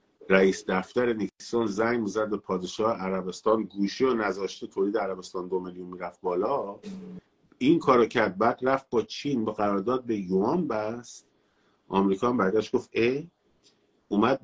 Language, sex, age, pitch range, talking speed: Persian, male, 50-69, 95-125 Hz, 140 wpm